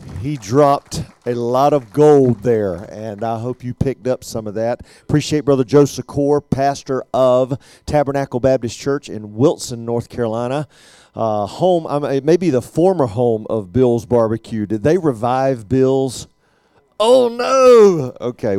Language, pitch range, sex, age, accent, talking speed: English, 115-150 Hz, male, 40-59, American, 145 wpm